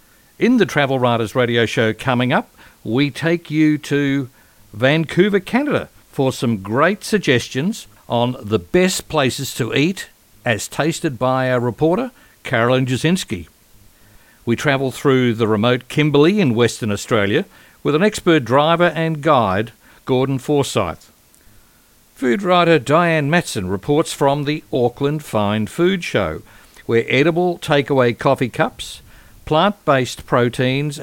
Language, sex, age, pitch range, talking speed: English, male, 60-79, 115-160 Hz, 130 wpm